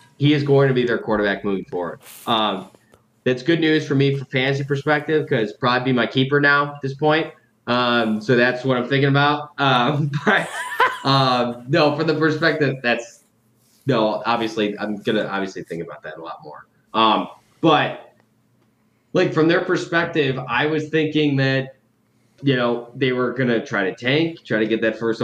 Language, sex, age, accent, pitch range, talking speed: English, male, 20-39, American, 115-145 Hz, 190 wpm